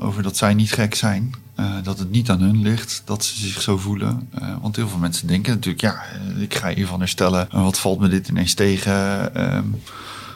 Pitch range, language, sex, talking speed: 95-115 Hz, Dutch, male, 220 wpm